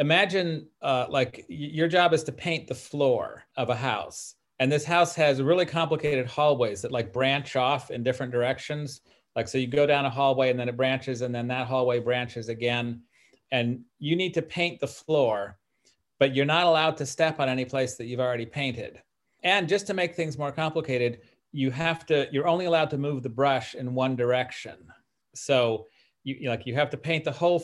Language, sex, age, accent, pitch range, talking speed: English, male, 40-59, American, 125-155 Hz, 200 wpm